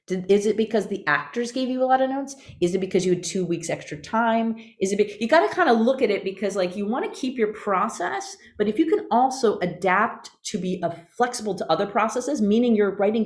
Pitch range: 170-240 Hz